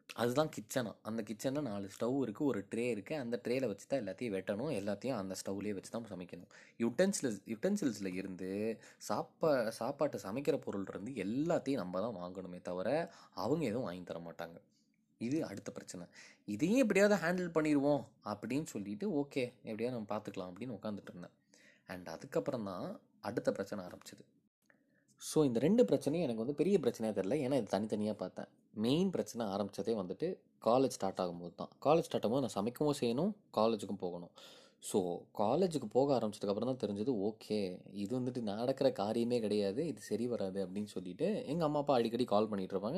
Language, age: Tamil, 20-39